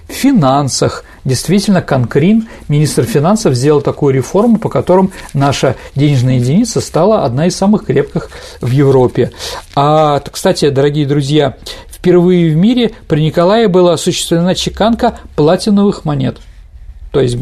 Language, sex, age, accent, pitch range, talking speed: Russian, male, 40-59, native, 140-195 Hz, 125 wpm